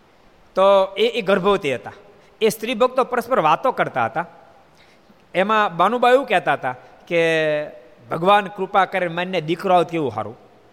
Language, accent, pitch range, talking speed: Gujarati, native, 150-210 Hz, 140 wpm